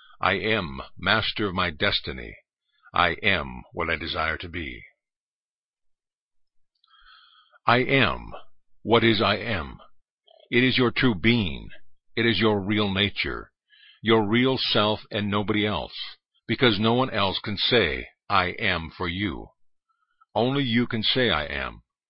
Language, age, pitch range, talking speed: English, 50-69, 95-115 Hz, 140 wpm